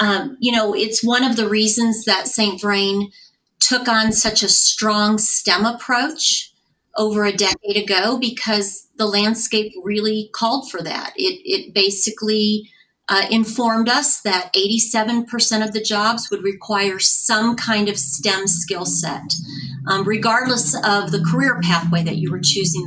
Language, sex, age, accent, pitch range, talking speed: English, female, 40-59, American, 190-225 Hz, 150 wpm